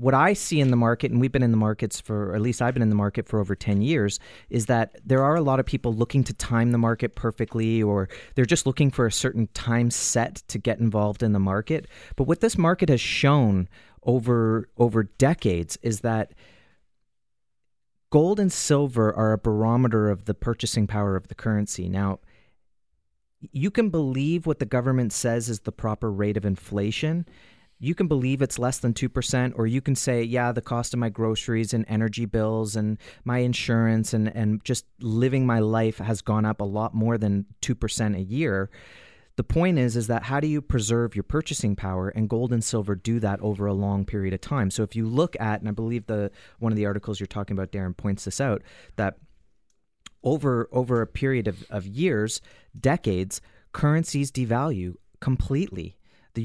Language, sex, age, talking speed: English, male, 30-49, 200 wpm